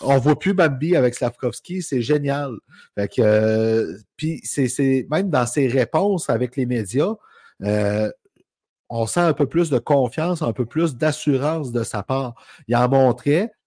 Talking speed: 175 wpm